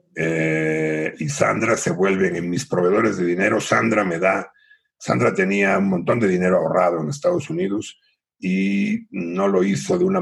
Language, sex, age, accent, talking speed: Spanish, male, 60-79, Mexican, 170 wpm